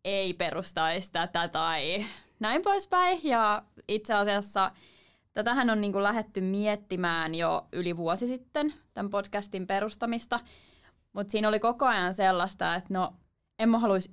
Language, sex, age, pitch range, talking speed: Finnish, female, 20-39, 185-235 Hz, 140 wpm